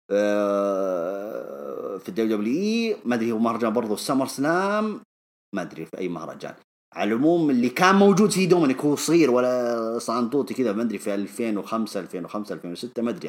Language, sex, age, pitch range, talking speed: English, male, 30-49, 100-140 Hz, 140 wpm